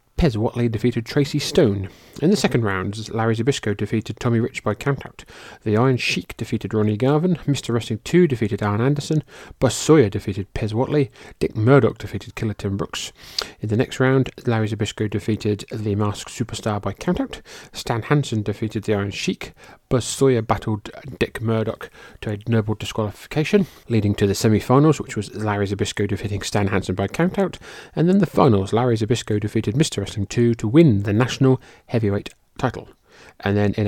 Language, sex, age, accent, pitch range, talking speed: English, male, 30-49, British, 105-130 Hz, 175 wpm